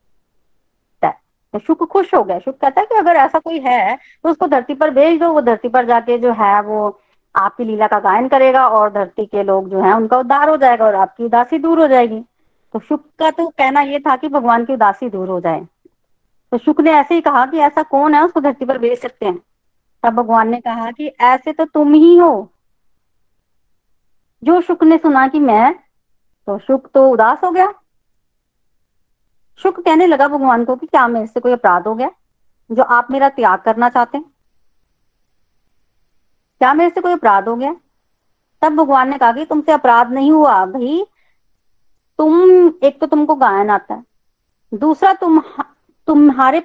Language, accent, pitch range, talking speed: Hindi, native, 235-310 Hz, 190 wpm